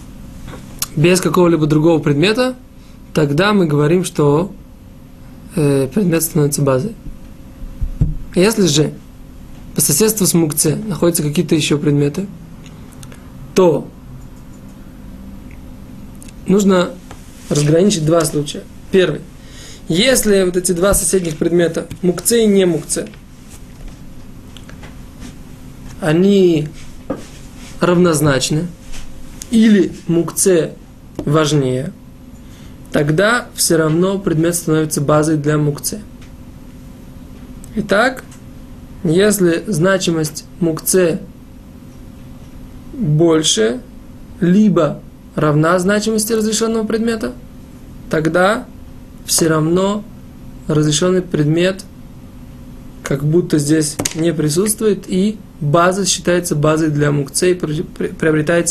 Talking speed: 80 wpm